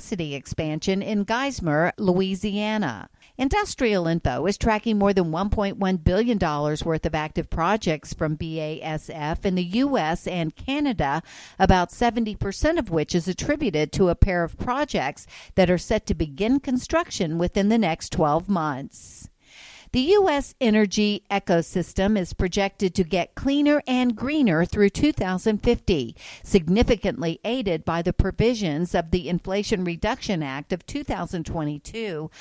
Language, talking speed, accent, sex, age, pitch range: English, 130 wpm, American, female, 50-69, 165-215 Hz